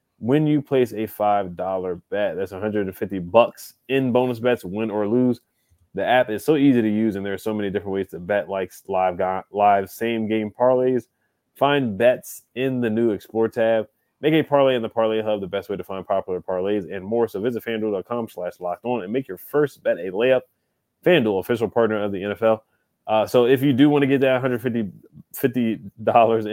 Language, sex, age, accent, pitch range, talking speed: English, male, 20-39, American, 100-120 Hz, 195 wpm